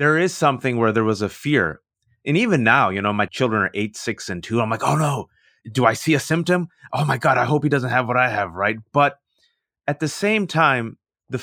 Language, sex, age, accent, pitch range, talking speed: English, male, 30-49, American, 110-145 Hz, 245 wpm